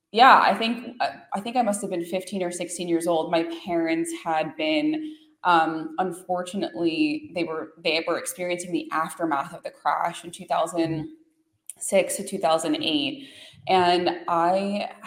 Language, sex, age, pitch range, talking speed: English, female, 20-39, 170-245 Hz, 155 wpm